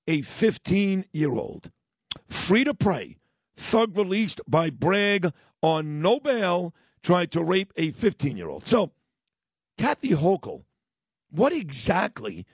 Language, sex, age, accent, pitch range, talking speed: English, male, 50-69, American, 165-205 Hz, 105 wpm